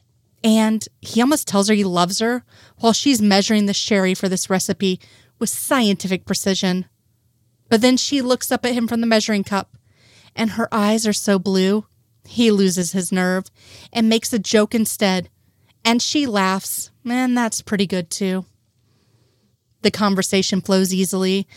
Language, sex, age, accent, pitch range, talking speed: English, female, 30-49, American, 180-230 Hz, 160 wpm